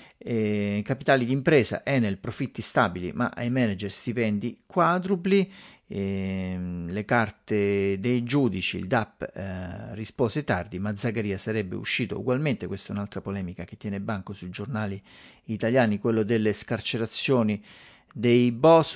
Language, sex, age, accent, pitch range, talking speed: Italian, male, 40-59, native, 100-130 Hz, 130 wpm